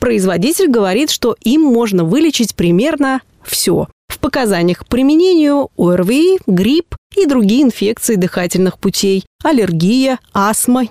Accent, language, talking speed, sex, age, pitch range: native, Russian, 115 wpm, female, 20-39, 195-280 Hz